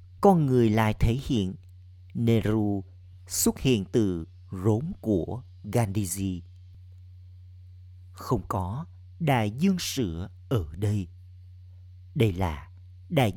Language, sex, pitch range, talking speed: Vietnamese, male, 90-110 Hz, 100 wpm